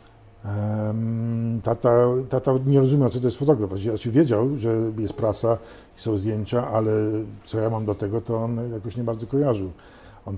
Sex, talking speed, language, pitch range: male, 170 wpm, Polish, 100-120 Hz